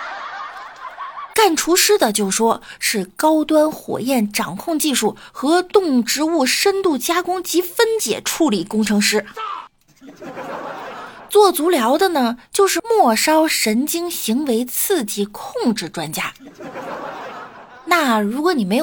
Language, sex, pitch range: Chinese, female, 200-310 Hz